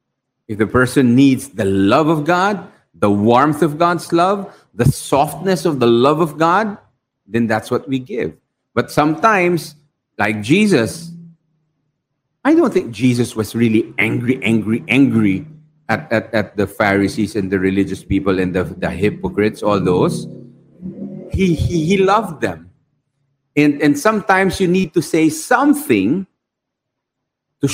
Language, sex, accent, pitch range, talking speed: English, male, Filipino, 120-185 Hz, 145 wpm